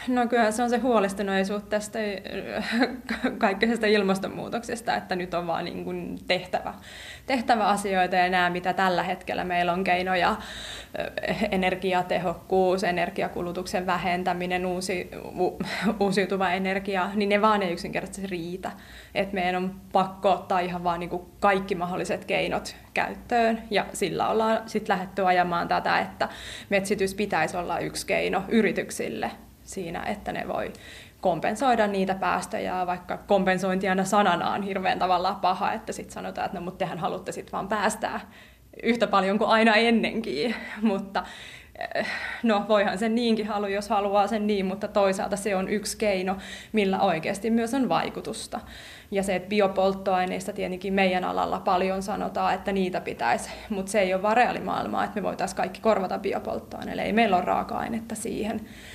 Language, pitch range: Finnish, 185-215 Hz